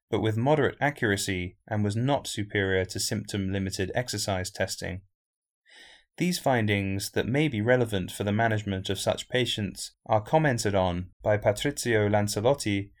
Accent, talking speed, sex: British, 140 wpm, male